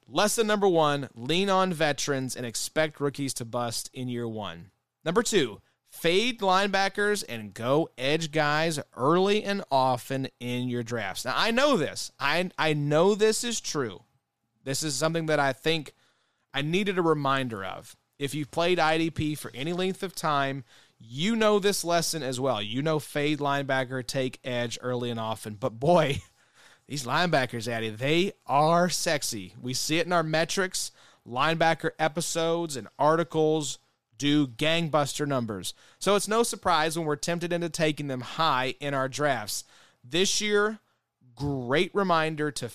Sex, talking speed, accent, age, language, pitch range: male, 160 wpm, American, 30-49, English, 125-170 Hz